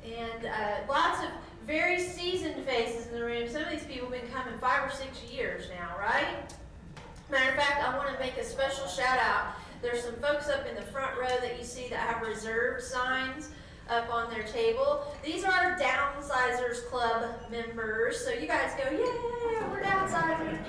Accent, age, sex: American, 40-59, female